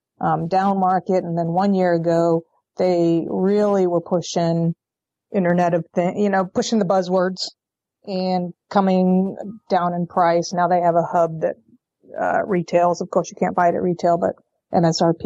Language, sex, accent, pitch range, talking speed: English, female, American, 175-205 Hz, 170 wpm